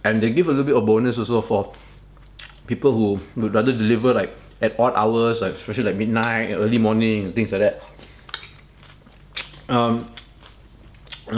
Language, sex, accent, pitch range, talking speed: English, male, Malaysian, 115-140 Hz, 160 wpm